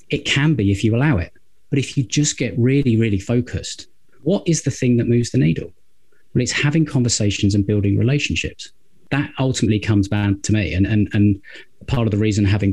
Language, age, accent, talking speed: English, 30-49, British, 210 wpm